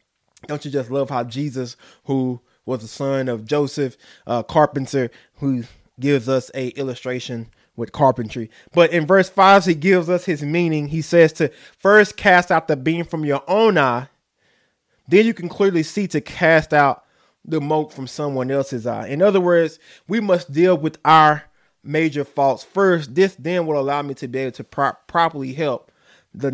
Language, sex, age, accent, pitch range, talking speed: English, male, 20-39, American, 140-185 Hz, 185 wpm